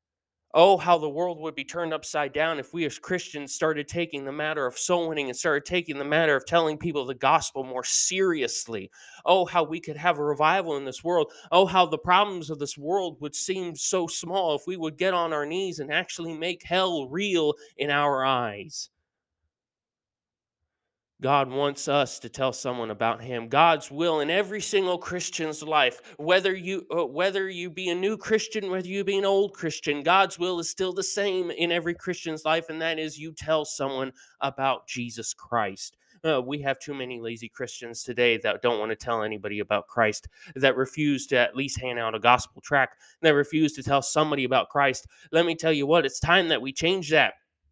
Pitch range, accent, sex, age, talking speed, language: 135-180 Hz, American, male, 20-39, 200 wpm, English